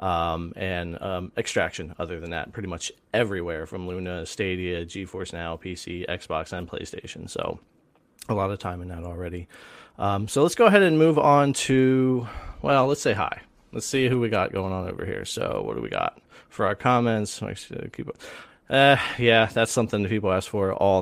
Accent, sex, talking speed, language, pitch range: American, male, 190 wpm, English, 90-120 Hz